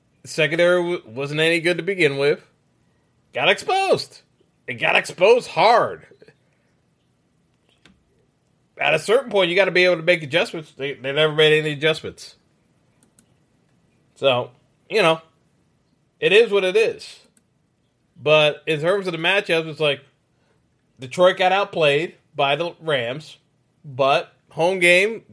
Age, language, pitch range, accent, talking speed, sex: 30-49, English, 150-200 Hz, American, 135 wpm, male